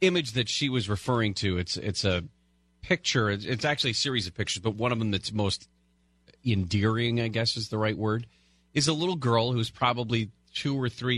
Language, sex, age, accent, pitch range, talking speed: English, male, 30-49, American, 95-145 Hz, 205 wpm